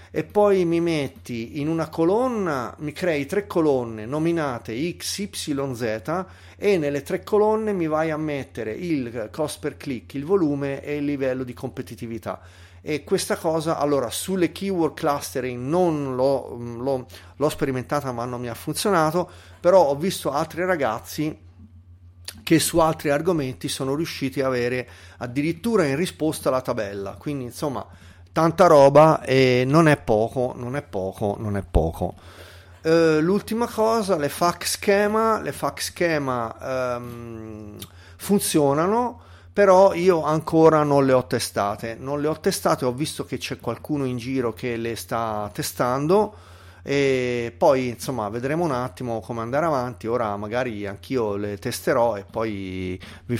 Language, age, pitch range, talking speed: Italian, 30-49, 110-160 Hz, 145 wpm